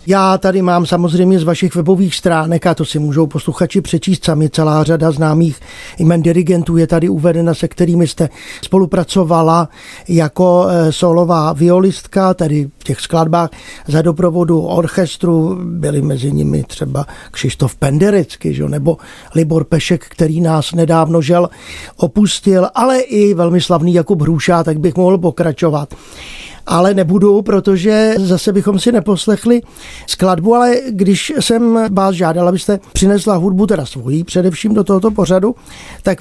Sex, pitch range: male, 165-200 Hz